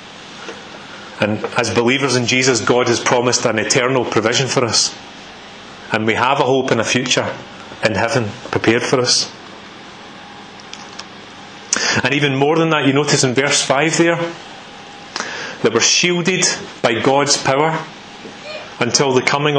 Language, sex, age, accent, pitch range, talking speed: English, male, 30-49, British, 130-160 Hz, 140 wpm